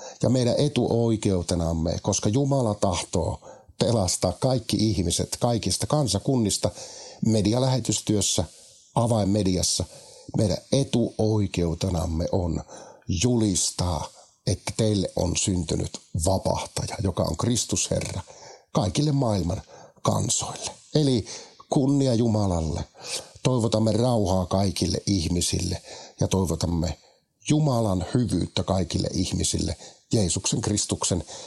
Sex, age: male, 50-69